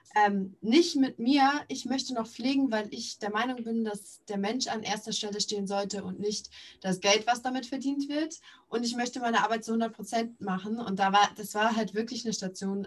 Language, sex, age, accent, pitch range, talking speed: German, female, 20-39, German, 195-250 Hz, 215 wpm